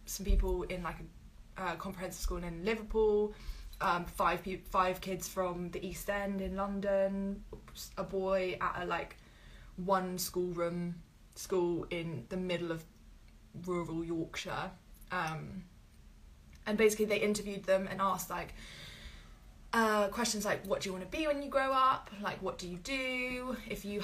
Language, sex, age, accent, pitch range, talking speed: English, female, 10-29, British, 180-205 Hz, 165 wpm